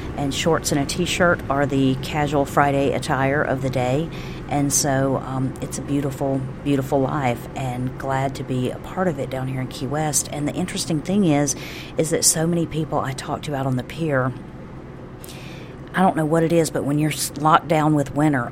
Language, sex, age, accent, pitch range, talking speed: English, female, 40-59, American, 130-150 Hz, 205 wpm